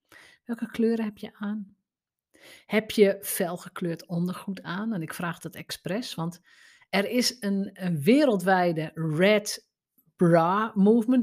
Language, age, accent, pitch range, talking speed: Dutch, 50-69, Dutch, 175-230 Hz, 120 wpm